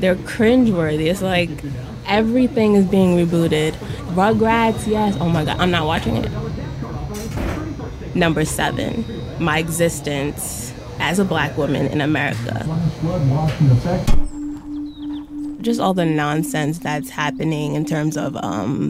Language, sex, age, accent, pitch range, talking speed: English, female, 20-39, American, 160-235 Hz, 115 wpm